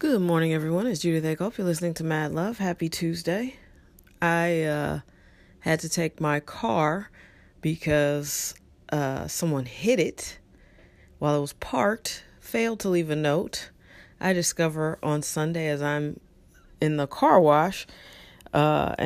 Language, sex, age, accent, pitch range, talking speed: English, female, 40-59, American, 140-170 Hz, 140 wpm